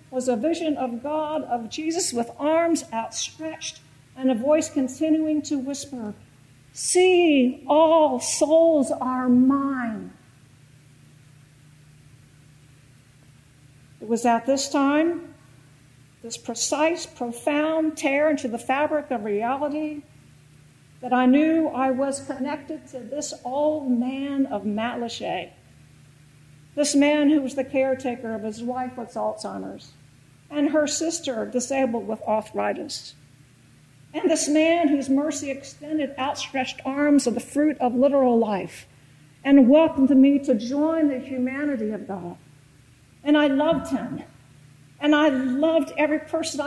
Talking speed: 125 wpm